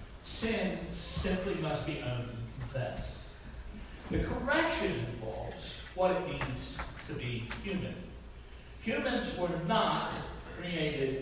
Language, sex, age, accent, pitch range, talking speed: English, male, 60-79, American, 130-180 Hz, 105 wpm